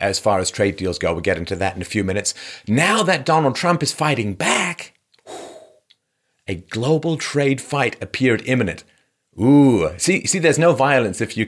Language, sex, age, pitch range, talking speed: English, male, 40-59, 95-140 Hz, 185 wpm